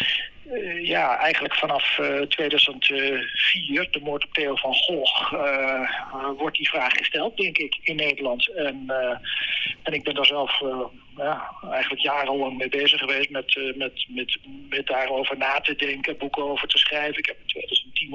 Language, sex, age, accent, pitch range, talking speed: Dutch, male, 50-69, Dutch, 135-200 Hz, 165 wpm